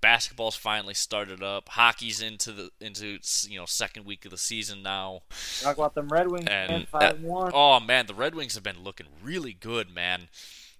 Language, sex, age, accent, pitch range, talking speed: English, male, 20-39, American, 90-110 Hz, 190 wpm